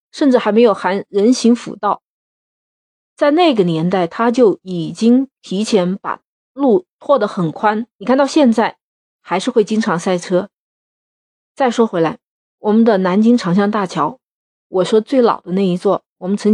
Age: 30-49